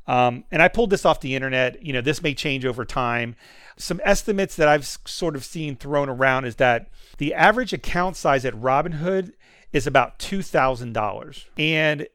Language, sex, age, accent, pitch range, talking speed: English, male, 40-59, American, 125-160 Hz, 180 wpm